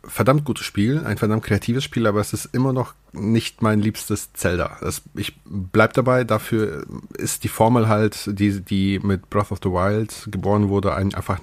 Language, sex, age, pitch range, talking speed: German, male, 30-49, 95-115 Hz, 185 wpm